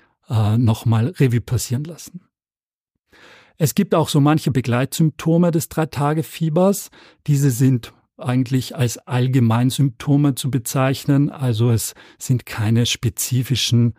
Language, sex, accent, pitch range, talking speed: German, male, German, 110-140 Hz, 115 wpm